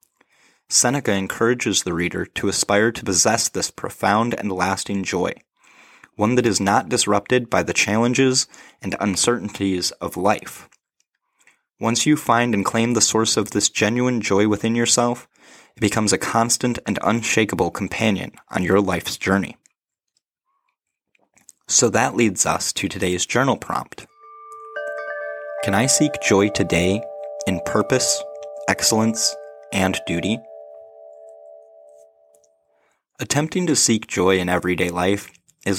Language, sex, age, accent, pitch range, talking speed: English, male, 20-39, American, 90-115 Hz, 125 wpm